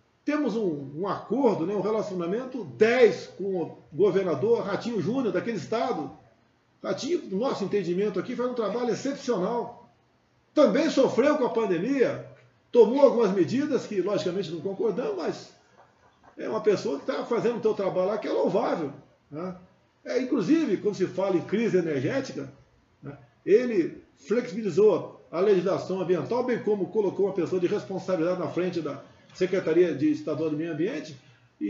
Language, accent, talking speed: Portuguese, Brazilian, 155 wpm